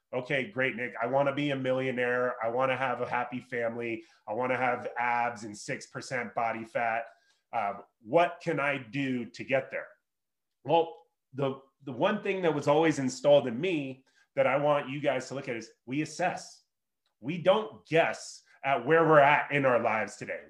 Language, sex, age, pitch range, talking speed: English, male, 30-49, 130-170 Hz, 195 wpm